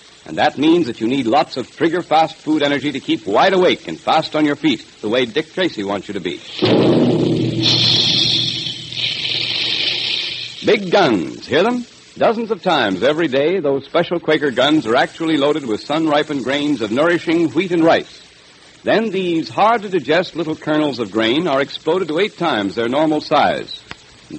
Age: 60-79